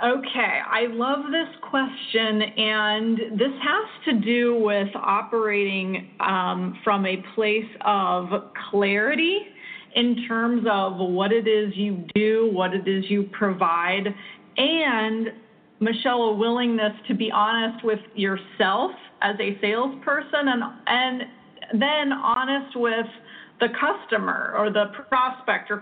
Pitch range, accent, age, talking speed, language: 205-245 Hz, American, 30-49, 125 wpm, English